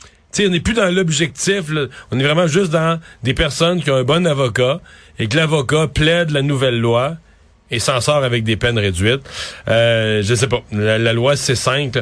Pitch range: 125-175 Hz